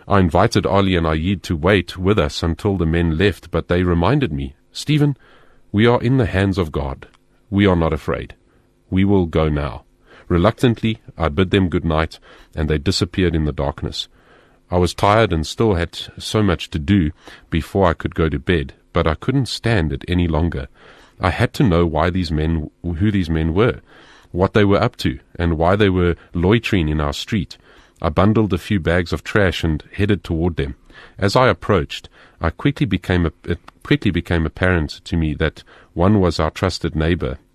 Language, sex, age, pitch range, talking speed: English, male, 40-59, 80-100 Hz, 190 wpm